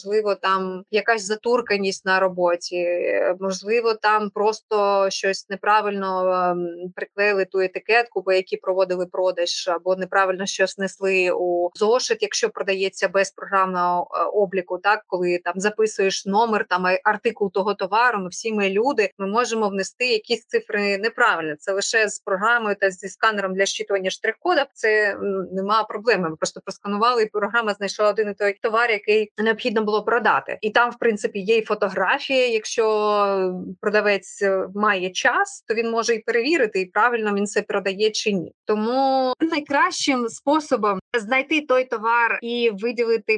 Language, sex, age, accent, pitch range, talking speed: Ukrainian, female, 20-39, native, 195-235 Hz, 145 wpm